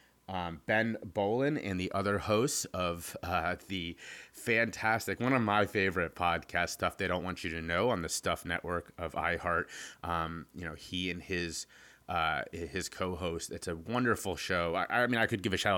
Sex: male